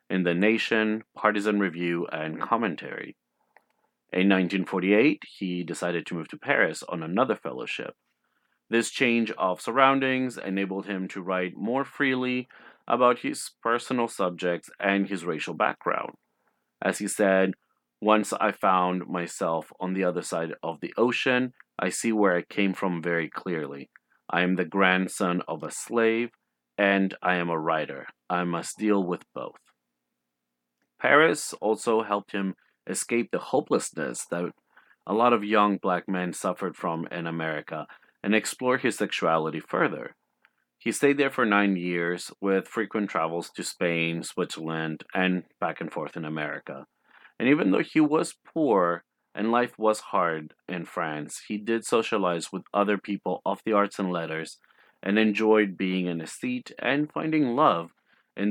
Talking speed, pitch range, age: 155 wpm, 85-110 Hz, 30-49